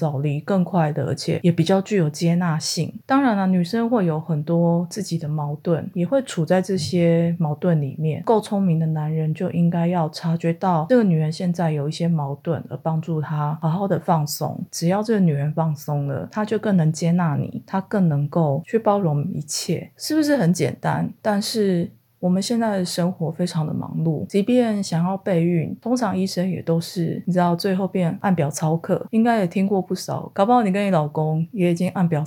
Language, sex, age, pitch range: Chinese, female, 30-49, 160-195 Hz